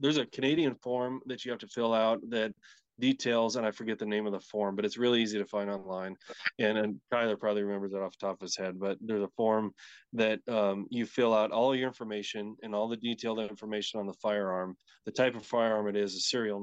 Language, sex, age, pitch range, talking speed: English, male, 20-39, 100-120 Hz, 240 wpm